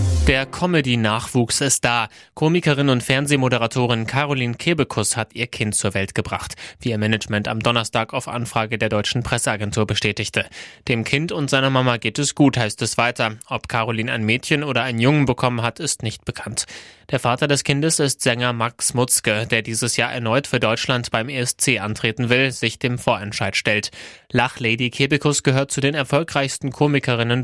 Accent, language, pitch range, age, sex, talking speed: German, German, 115-140 Hz, 20-39, male, 170 wpm